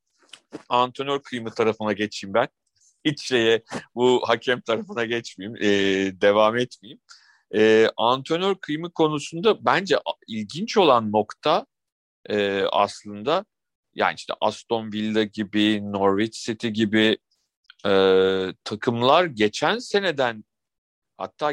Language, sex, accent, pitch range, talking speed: Turkish, male, native, 105-135 Hz, 105 wpm